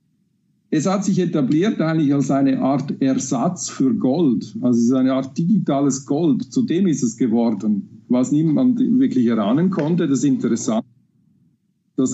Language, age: German, 50-69